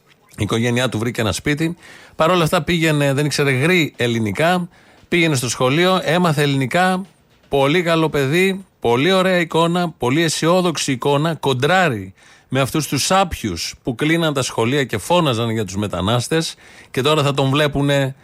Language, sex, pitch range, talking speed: Greek, male, 125-160 Hz, 155 wpm